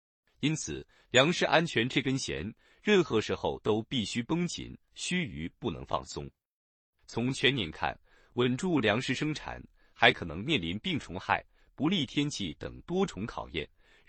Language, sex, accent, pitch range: Chinese, male, native, 100-150 Hz